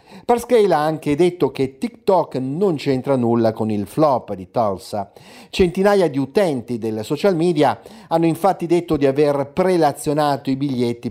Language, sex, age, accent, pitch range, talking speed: Italian, male, 50-69, native, 120-165 Hz, 150 wpm